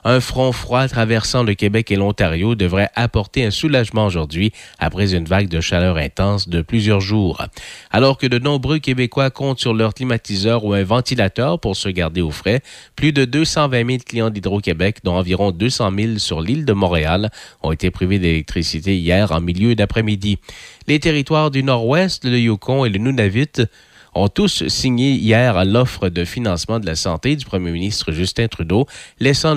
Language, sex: French, male